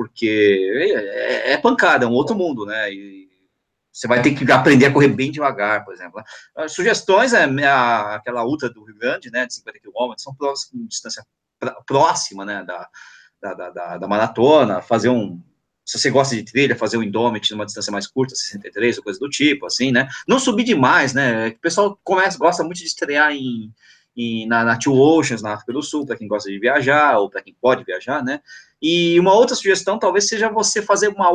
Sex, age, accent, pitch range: male, 20-39, Brazilian, 120-175 Hz